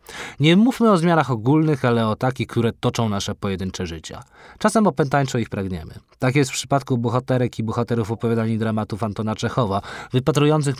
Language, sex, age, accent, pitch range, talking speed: Polish, male, 20-39, native, 105-145 Hz, 160 wpm